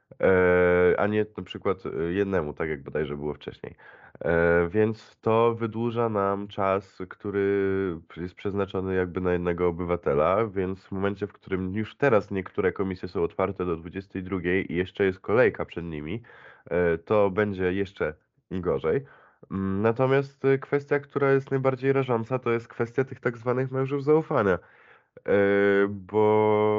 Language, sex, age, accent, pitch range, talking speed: Polish, male, 20-39, native, 90-110 Hz, 135 wpm